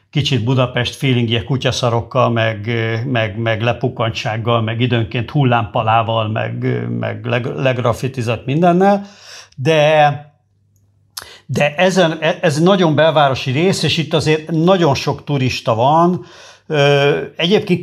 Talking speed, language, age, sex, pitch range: 100 wpm, Hungarian, 50-69, male, 115-155 Hz